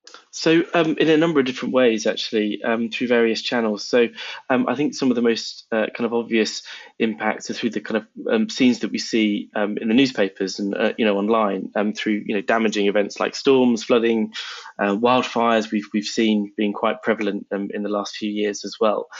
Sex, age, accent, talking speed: male, 20-39, British, 220 wpm